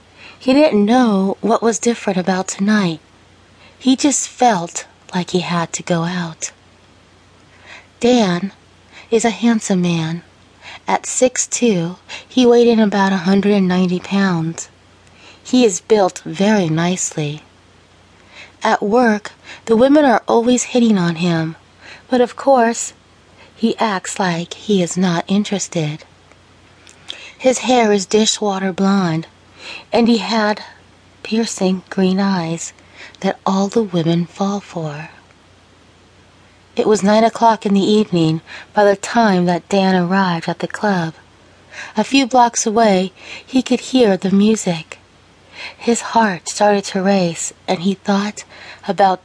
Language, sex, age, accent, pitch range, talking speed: English, female, 30-49, American, 160-215 Hz, 130 wpm